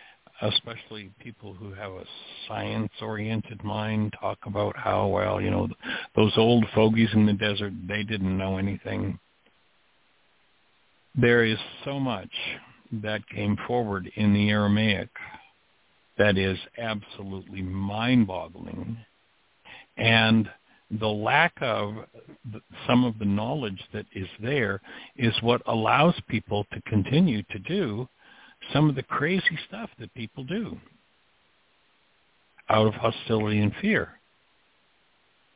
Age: 60-79